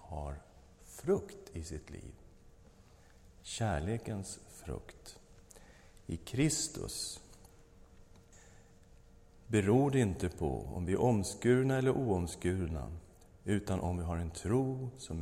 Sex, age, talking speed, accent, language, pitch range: male, 50-69, 100 wpm, Swedish, English, 90-100 Hz